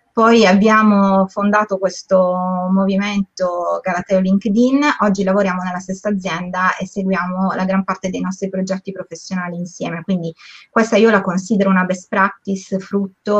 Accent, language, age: native, Italian, 20-39